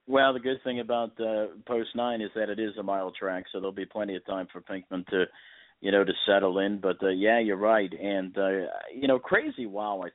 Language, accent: English, American